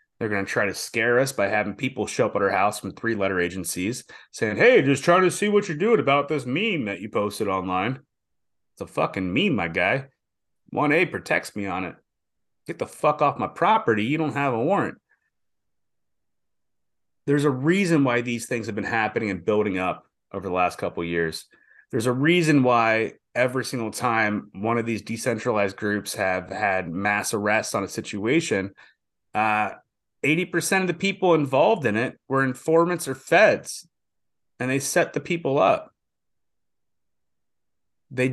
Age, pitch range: 30-49, 105-150 Hz